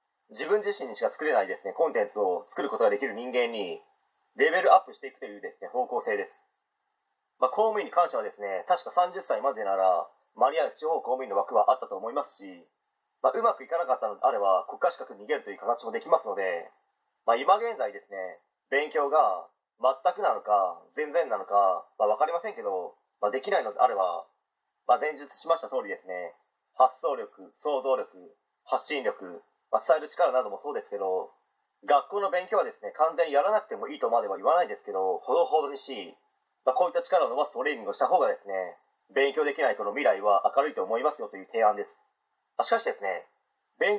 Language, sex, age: Japanese, male, 30-49